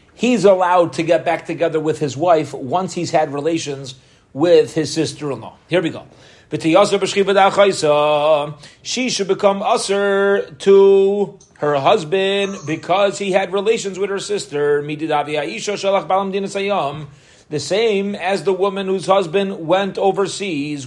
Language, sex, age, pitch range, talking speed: English, male, 30-49, 150-195 Hz, 120 wpm